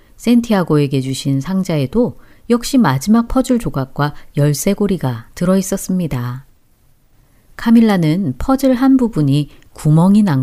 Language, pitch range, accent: Korean, 135-210 Hz, native